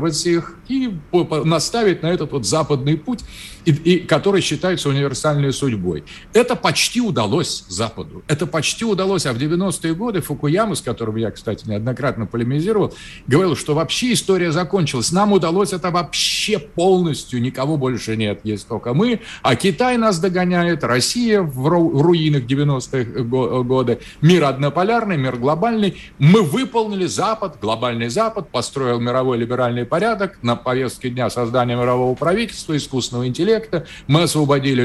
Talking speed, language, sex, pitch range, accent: 135 wpm, Russian, male, 125-180 Hz, native